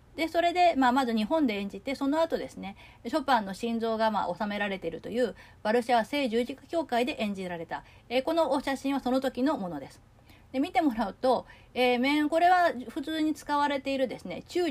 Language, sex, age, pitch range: Japanese, female, 40-59, 205-285 Hz